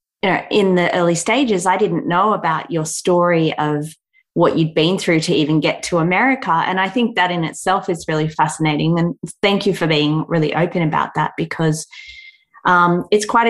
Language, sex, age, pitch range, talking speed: English, female, 20-39, 160-205 Hz, 190 wpm